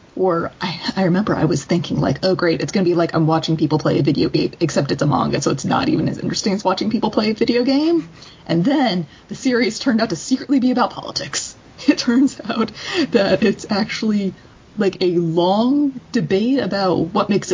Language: English